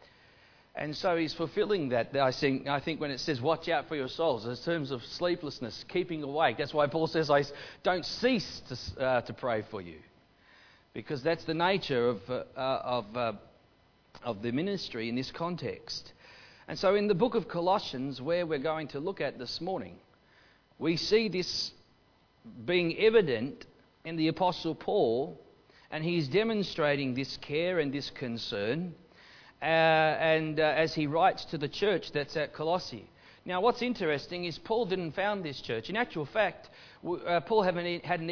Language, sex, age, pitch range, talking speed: English, male, 40-59, 150-205 Hz, 175 wpm